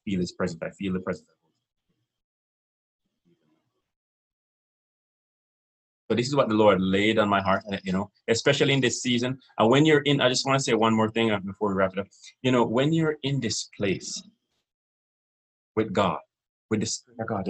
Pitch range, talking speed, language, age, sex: 95-120 Hz, 190 wpm, English, 30-49, male